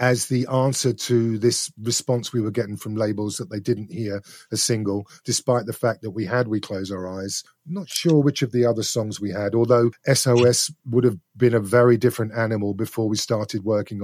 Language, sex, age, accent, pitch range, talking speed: English, male, 40-59, British, 105-130 Hz, 215 wpm